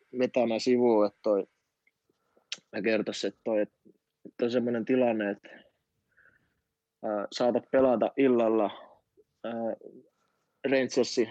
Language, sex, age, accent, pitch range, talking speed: Finnish, male, 20-39, native, 115-130 Hz, 100 wpm